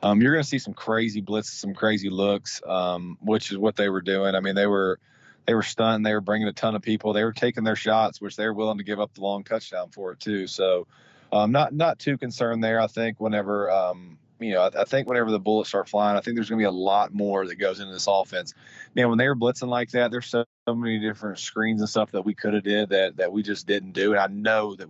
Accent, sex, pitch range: American, male, 100-115 Hz